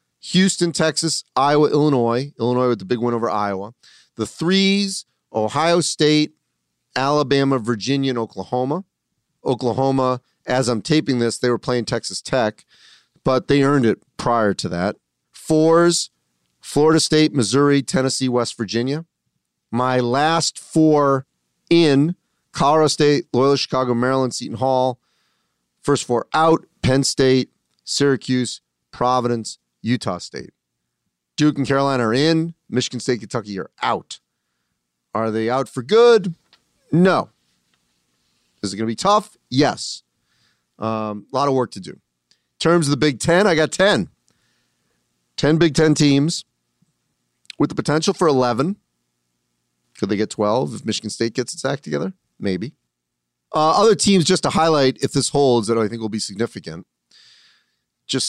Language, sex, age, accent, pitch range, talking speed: English, male, 40-59, American, 110-150 Hz, 140 wpm